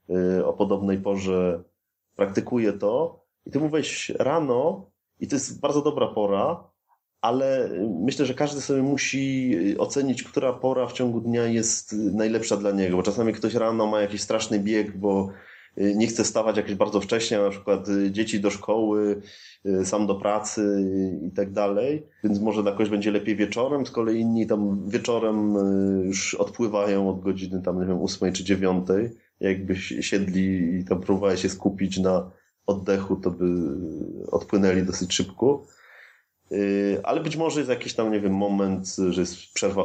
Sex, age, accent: male, 30-49, native